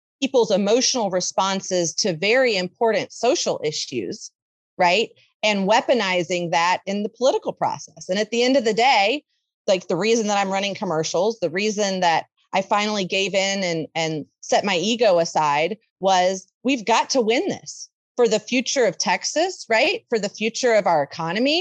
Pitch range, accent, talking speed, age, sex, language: 190-250 Hz, American, 170 wpm, 30-49, female, English